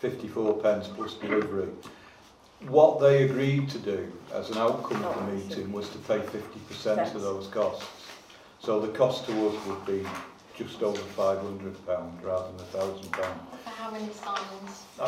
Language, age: English, 50-69